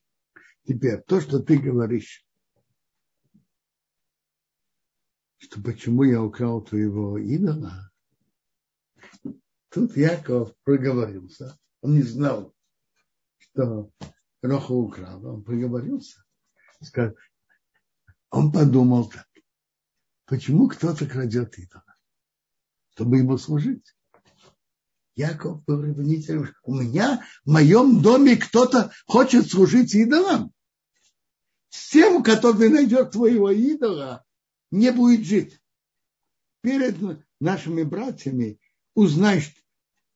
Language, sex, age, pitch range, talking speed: Russian, male, 60-79, 125-190 Hz, 85 wpm